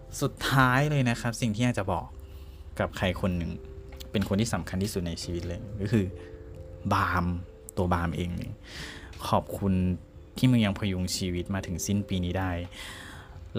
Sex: male